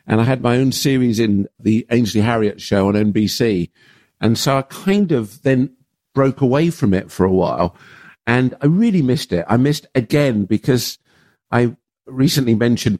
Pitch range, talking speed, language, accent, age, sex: 95-125 Hz, 175 wpm, English, British, 50-69, male